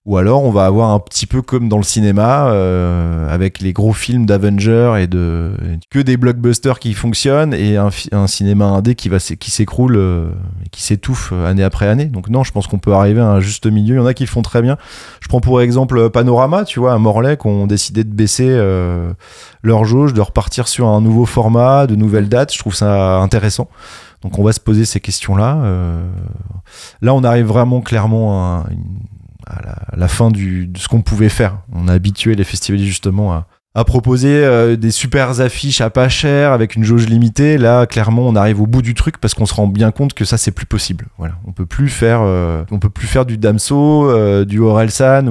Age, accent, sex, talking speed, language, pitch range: 20-39, French, male, 225 wpm, French, 100-120 Hz